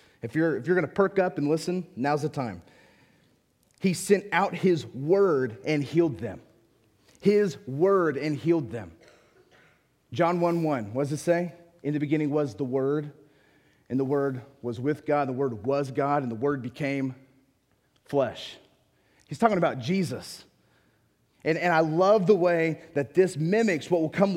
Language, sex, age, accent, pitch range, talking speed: English, male, 30-49, American, 150-200 Hz, 175 wpm